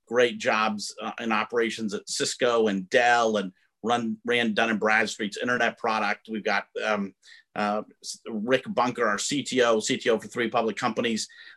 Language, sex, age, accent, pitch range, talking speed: English, male, 40-59, American, 105-130 Hz, 155 wpm